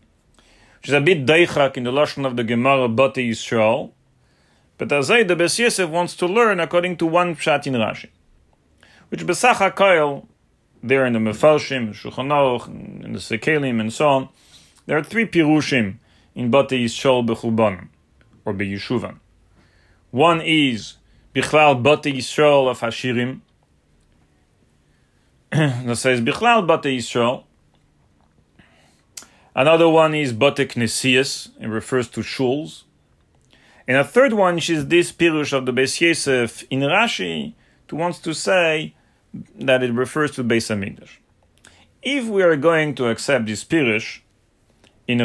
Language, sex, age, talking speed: English, male, 30-49, 135 wpm